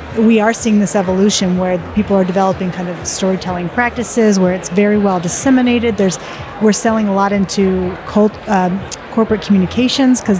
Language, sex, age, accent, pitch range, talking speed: English, female, 30-49, American, 195-245 Hz, 165 wpm